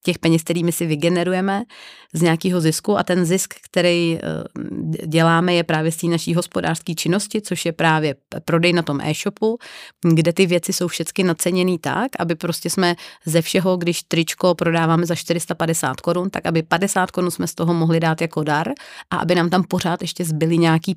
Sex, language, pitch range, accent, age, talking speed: female, Czech, 160-175 Hz, native, 30-49, 185 wpm